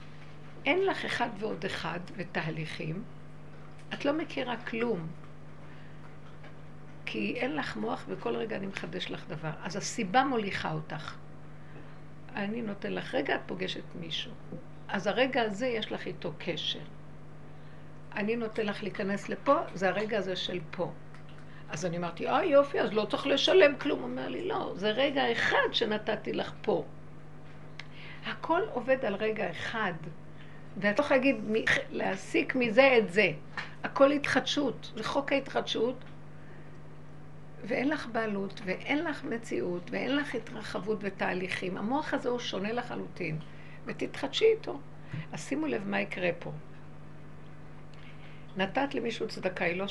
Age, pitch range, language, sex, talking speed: 60-79, 180-250 Hz, Hebrew, female, 135 wpm